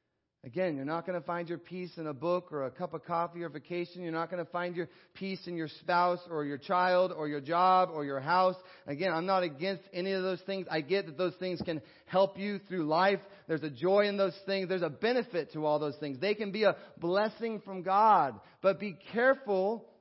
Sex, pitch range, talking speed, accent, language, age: male, 165-205 Hz, 235 wpm, American, English, 30-49